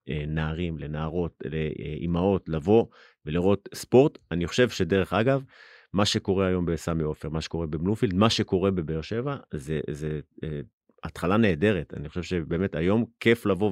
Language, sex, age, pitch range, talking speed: Hebrew, male, 30-49, 85-105 Hz, 140 wpm